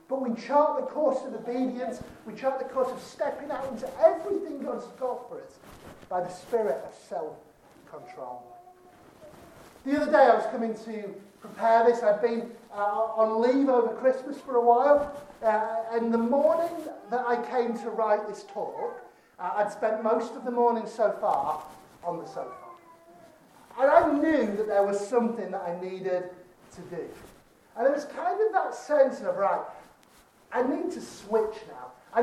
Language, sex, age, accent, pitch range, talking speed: English, male, 40-59, British, 220-295 Hz, 175 wpm